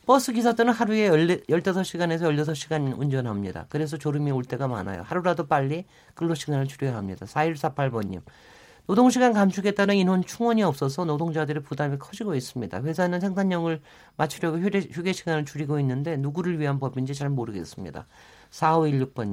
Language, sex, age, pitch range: Korean, male, 50-69, 135-185 Hz